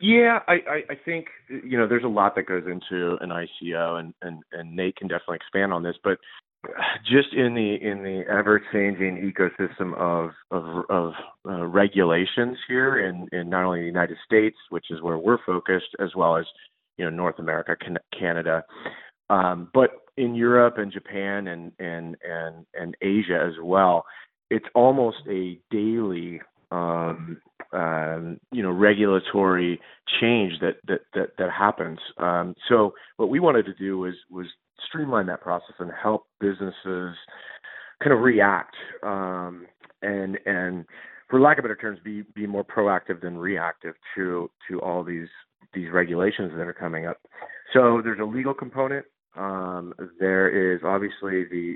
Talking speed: 160 wpm